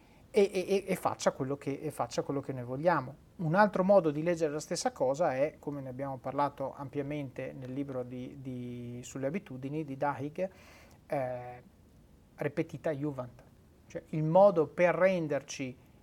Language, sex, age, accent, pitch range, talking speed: Italian, male, 30-49, native, 135-165 Hz, 145 wpm